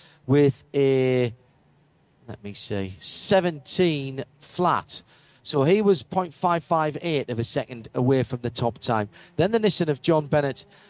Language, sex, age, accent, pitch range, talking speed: English, male, 40-59, British, 125-165 Hz, 140 wpm